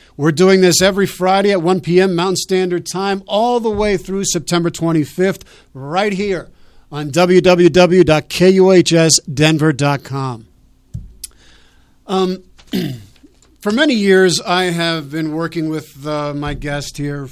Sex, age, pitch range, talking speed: male, 50-69, 140-170 Hz, 120 wpm